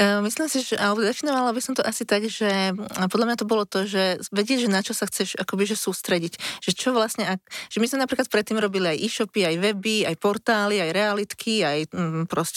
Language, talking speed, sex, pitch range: Slovak, 215 wpm, female, 190-225 Hz